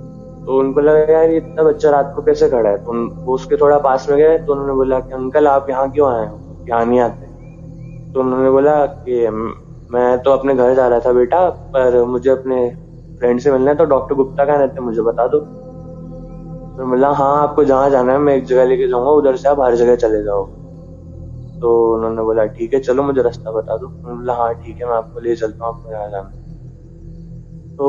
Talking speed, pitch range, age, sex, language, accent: 215 wpm, 120-150 Hz, 20-39, male, Hindi, native